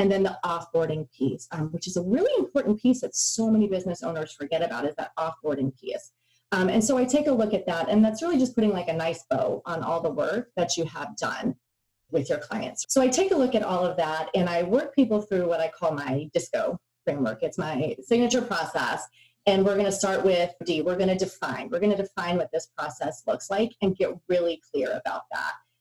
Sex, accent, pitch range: female, American, 160-210 Hz